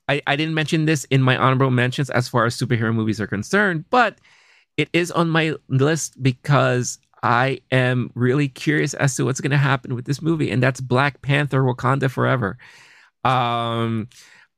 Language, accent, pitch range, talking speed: English, American, 100-130 Hz, 175 wpm